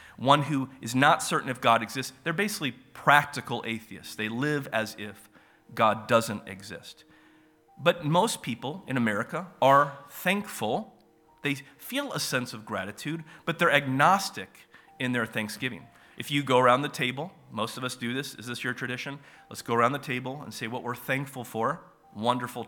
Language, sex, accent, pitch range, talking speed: English, male, American, 110-145 Hz, 170 wpm